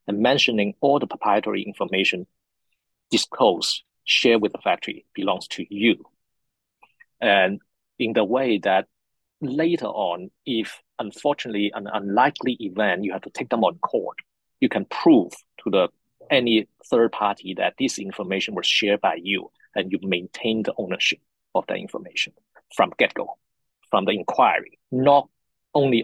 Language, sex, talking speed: English, male, 145 wpm